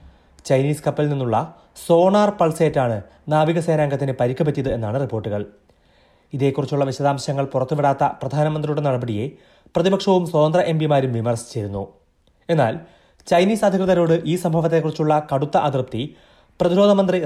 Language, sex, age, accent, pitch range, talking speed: Malayalam, male, 30-49, native, 125-170 Hz, 95 wpm